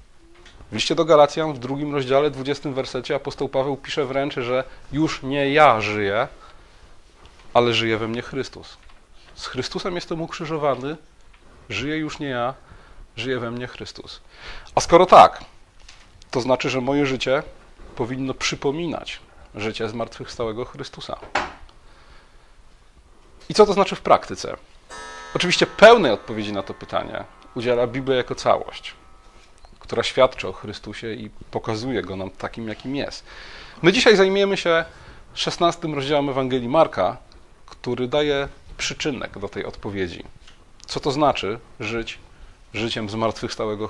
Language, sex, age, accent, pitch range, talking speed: Polish, male, 40-59, native, 110-150 Hz, 130 wpm